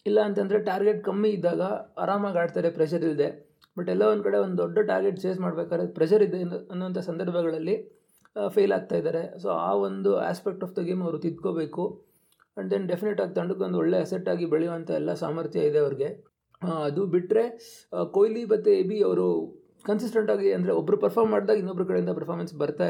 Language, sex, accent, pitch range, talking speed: Kannada, male, native, 165-210 Hz, 165 wpm